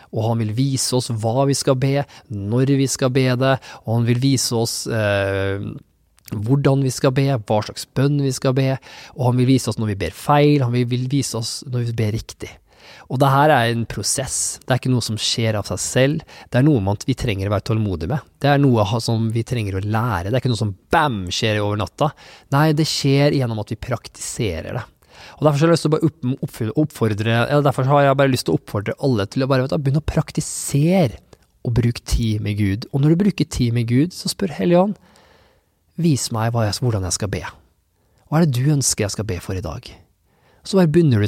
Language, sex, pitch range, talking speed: English, male, 110-140 Hz, 230 wpm